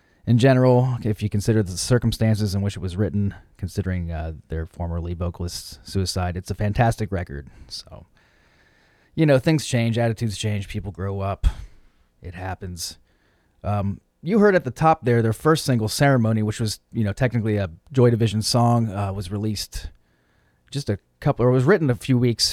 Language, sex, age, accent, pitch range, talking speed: English, male, 30-49, American, 90-115 Hz, 180 wpm